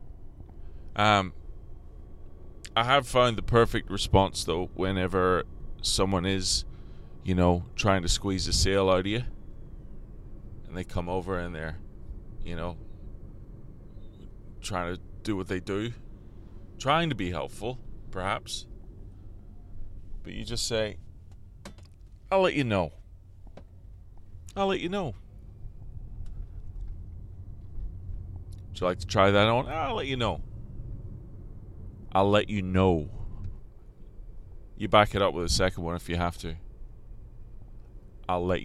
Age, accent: 30-49, American